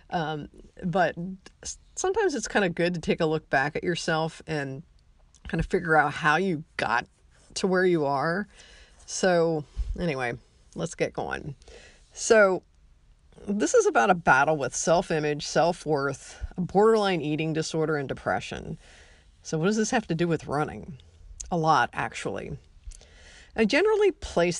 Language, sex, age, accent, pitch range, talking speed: English, female, 40-59, American, 145-185 Hz, 145 wpm